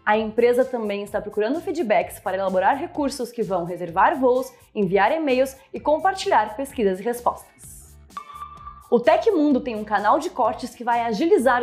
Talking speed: 155 wpm